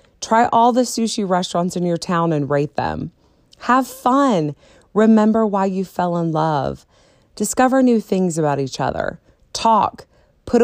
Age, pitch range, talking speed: 30-49, 160-215 Hz, 150 wpm